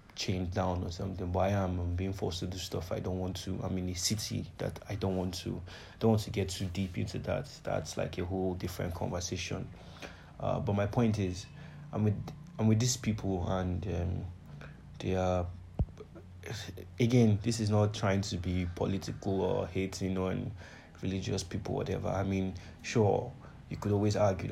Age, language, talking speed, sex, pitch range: 30-49, English, 185 wpm, male, 90-110 Hz